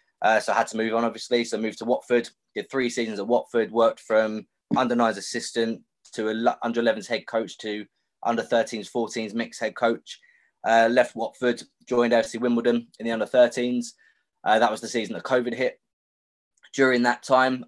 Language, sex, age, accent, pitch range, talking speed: English, male, 20-39, British, 115-125 Hz, 190 wpm